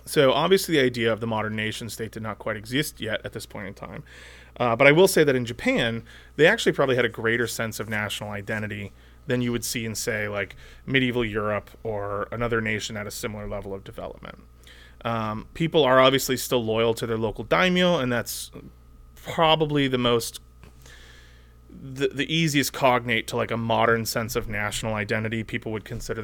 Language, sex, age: English, male, 30-49